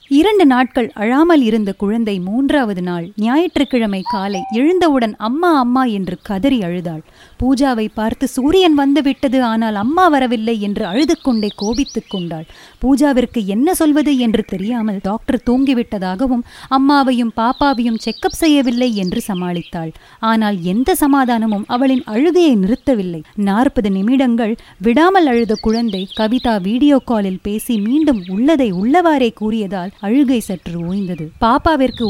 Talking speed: 120 wpm